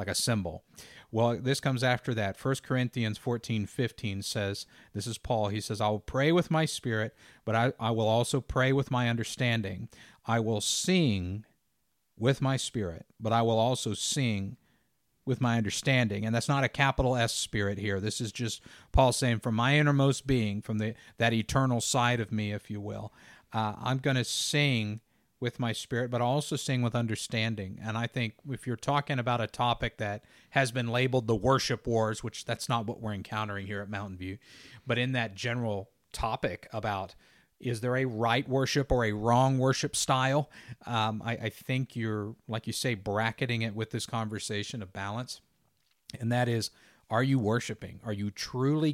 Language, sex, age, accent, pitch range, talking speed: English, male, 50-69, American, 110-130 Hz, 190 wpm